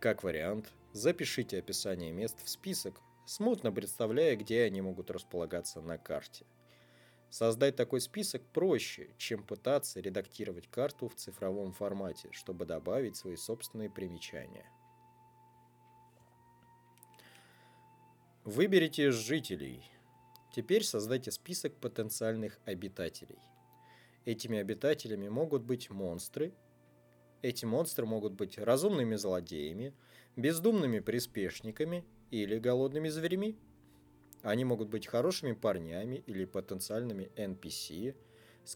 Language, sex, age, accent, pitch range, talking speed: Russian, male, 20-39, native, 100-125 Hz, 100 wpm